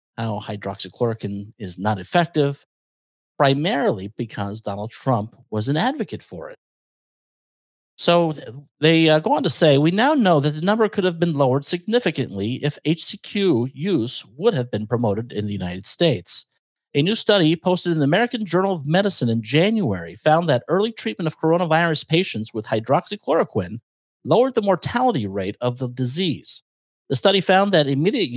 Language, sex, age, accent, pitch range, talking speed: English, male, 50-69, American, 120-180 Hz, 160 wpm